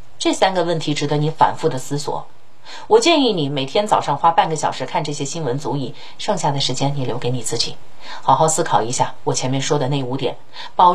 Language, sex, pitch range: Chinese, female, 140-235 Hz